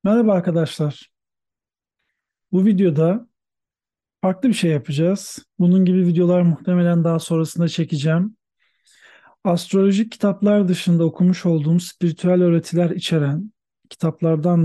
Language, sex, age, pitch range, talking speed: Turkish, male, 40-59, 155-185 Hz, 100 wpm